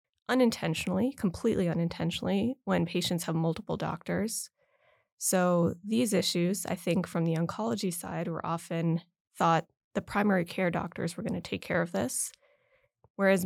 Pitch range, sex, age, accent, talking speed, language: 170-195 Hz, female, 20-39, American, 145 wpm, English